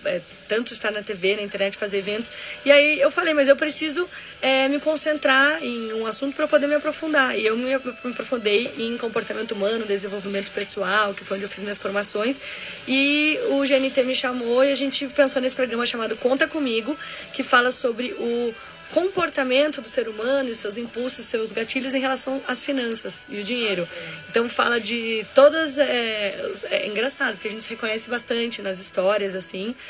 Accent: Brazilian